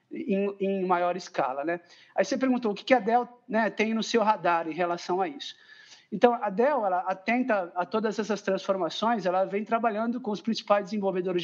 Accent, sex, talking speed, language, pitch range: Brazilian, male, 200 wpm, Portuguese, 185-230 Hz